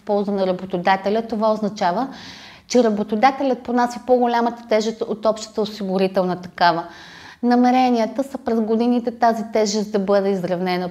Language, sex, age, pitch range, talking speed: Bulgarian, female, 30-49, 190-240 Hz, 125 wpm